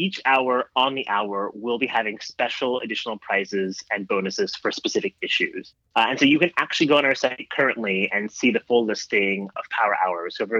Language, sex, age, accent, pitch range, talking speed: English, male, 30-49, American, 100-140 Hz, 210 wpm